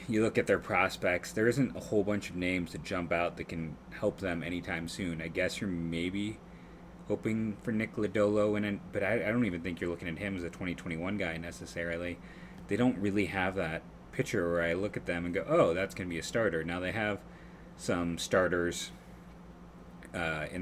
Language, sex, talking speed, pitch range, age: English, male, 205 wpm, 85-100 Hz, 30-49